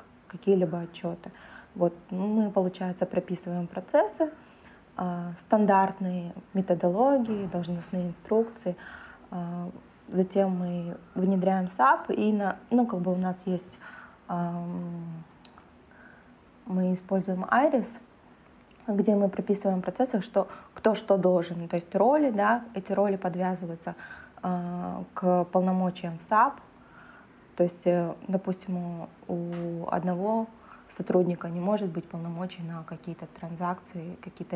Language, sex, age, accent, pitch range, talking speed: Ukrainian, female, 20-39, native, 175-200 Hz, 110 wpm